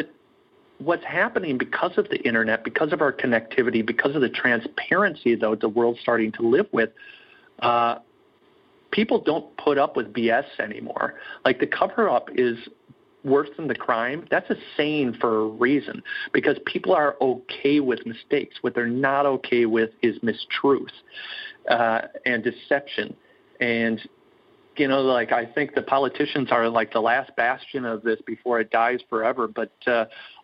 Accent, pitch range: American, 115-145 Hz